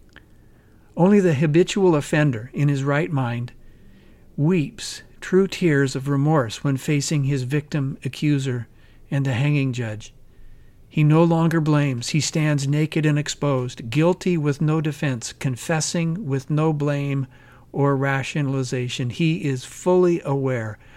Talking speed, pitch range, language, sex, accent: 130 wpm, 130-160 Hz, English, male, American